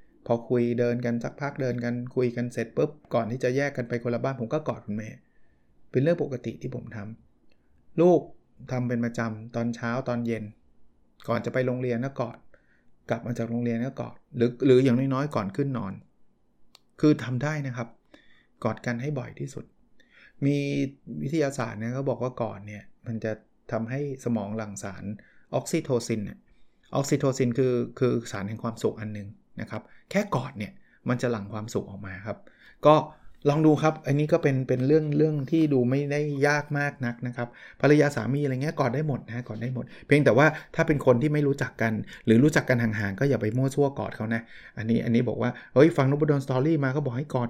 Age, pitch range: 20-39, 115-140 Hz